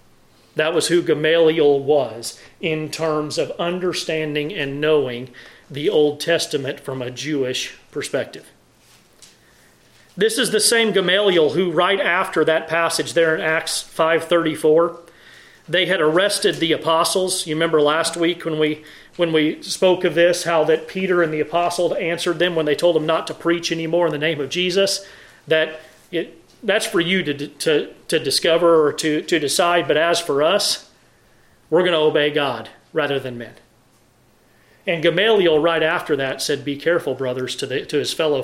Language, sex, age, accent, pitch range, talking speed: English, male, 40-59, American, 150-180 Hz, 170 wpm